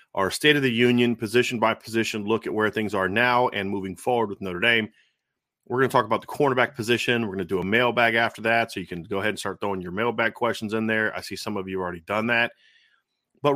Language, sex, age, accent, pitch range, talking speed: English, male, 30-49, American, 100-125 Hz, 255 wpm